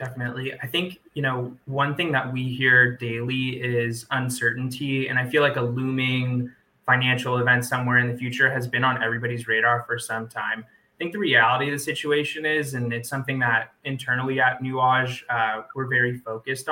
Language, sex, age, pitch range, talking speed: English, male, 20-39, 120-135 Hz, 185 wpm